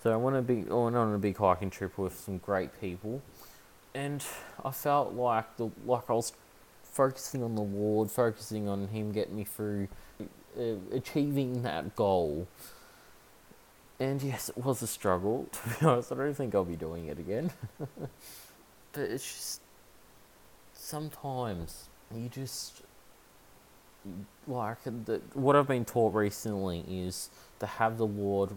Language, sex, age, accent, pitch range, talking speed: English, male, 20-39, Australian, 95-120 Hz, 155 wpm